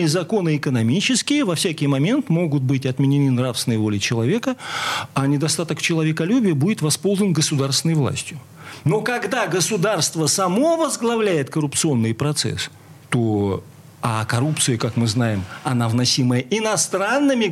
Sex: male